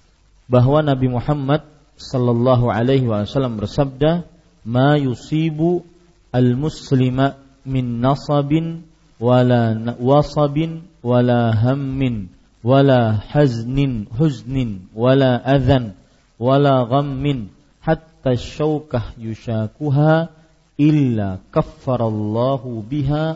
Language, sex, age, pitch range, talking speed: Malay, male, 40-59, 115-145 Hz, 75 wpm